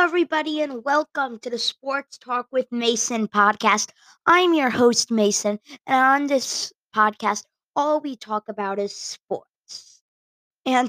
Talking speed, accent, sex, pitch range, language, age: 145 wpm, American, female, 210-250 Hz, English, 20-39